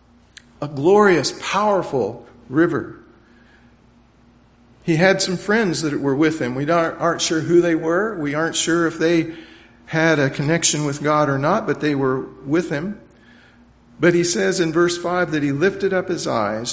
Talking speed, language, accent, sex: 170 wpm, English, American, male